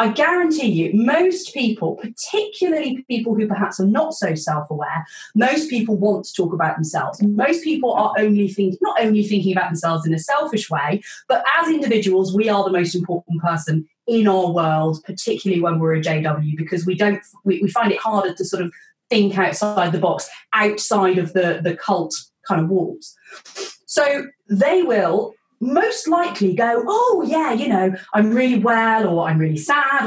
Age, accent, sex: 30-49, British, female